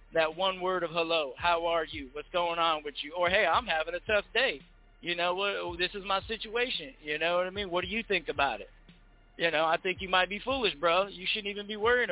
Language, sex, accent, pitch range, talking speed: English, male, American, 165-195 Hz, 255 wpm